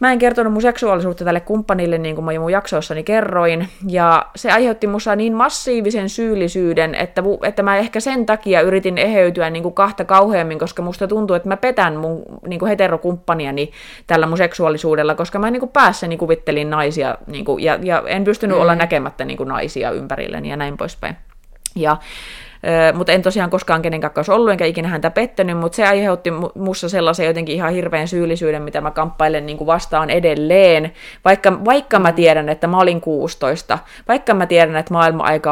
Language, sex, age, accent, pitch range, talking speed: Finnish, female, 20-39, native, 160-195 Hz, 175 wpm